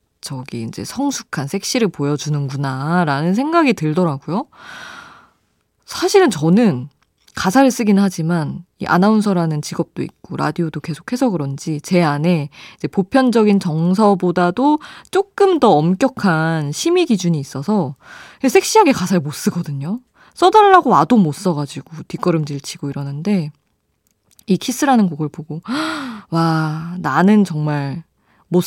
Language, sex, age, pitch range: Korean, female, 20-39, 155-245 Hz